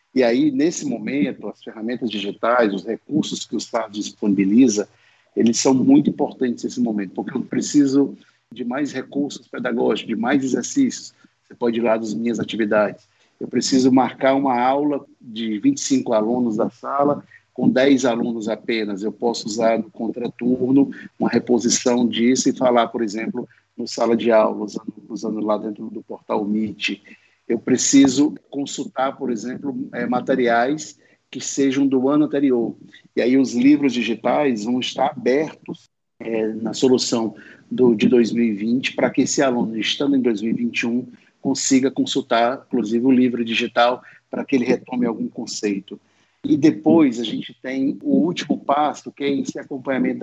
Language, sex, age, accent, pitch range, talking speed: Portuguese, male, 50-69, Brazilian, 115-140 Hz, 155 wpm